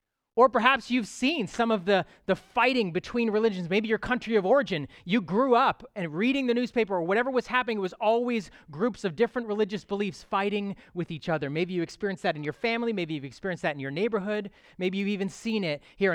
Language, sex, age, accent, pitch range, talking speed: English, male, 30-49, American, 155-220 Hz, 220 wpm